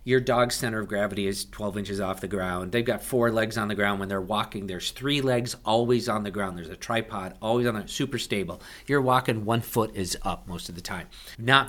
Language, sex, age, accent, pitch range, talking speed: English, male, 50-69, American, 105-135 Hz, 240 wpm